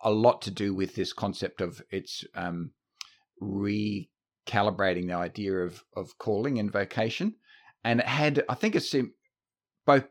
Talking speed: 155 wpm